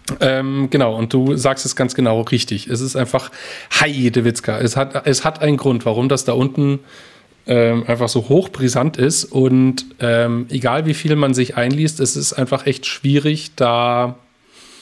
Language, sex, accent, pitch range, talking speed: German, male, German, 120-140 Hz, 175 wpm